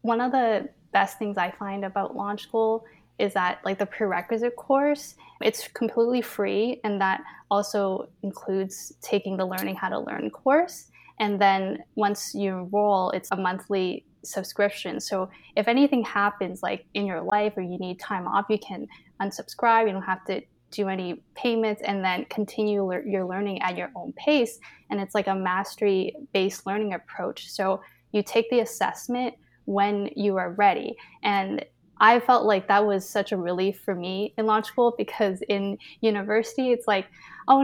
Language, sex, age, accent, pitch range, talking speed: English, female, 10-29, American, 195-230 Hz, 170 wpm